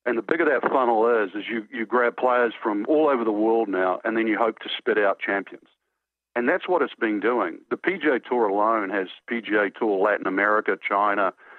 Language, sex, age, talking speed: English, male, 50-69, 210 wpm